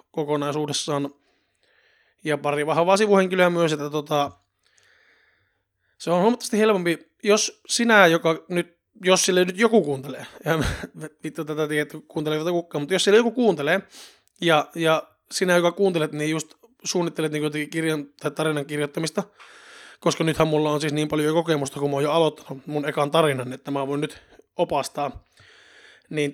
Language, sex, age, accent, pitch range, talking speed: Finnish, male, 20-39, native, 145-180 Hz, 150 wpm